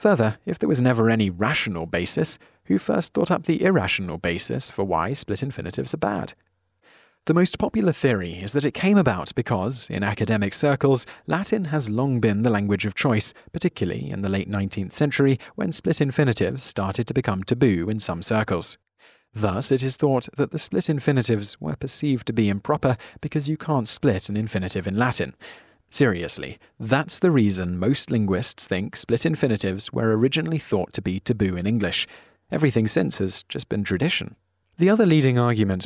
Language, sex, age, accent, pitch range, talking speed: English, male, 30-49, British, 100-145 Hz, 175 wpm